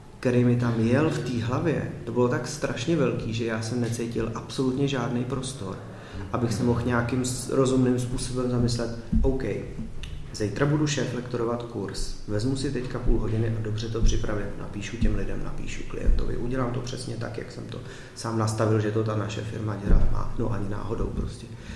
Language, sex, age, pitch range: Czech, male, 30-49, 110-130 Hz